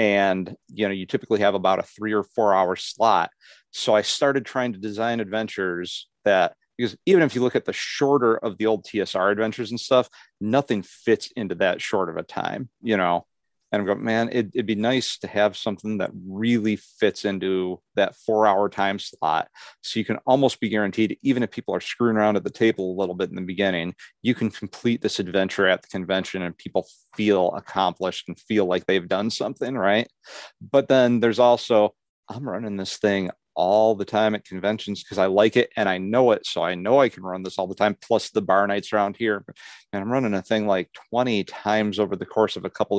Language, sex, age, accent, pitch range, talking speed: English, male, 40-59, American, 95-110 Hz, 220 wpm